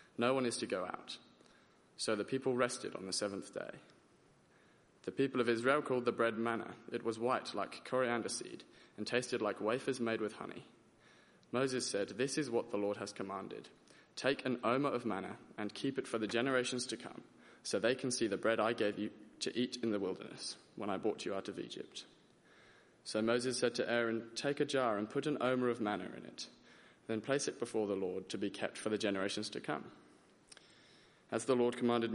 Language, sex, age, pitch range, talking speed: English, male, 20-39, 105-125 Hz, 210 wpm